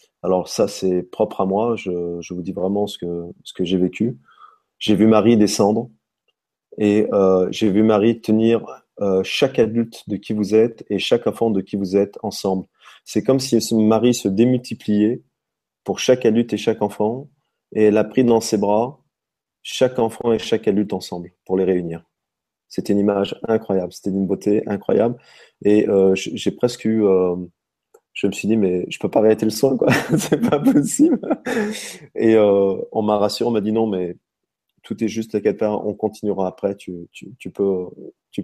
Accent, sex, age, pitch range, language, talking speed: French, male, 30-49, 95-110 Hz, French, 190 wpm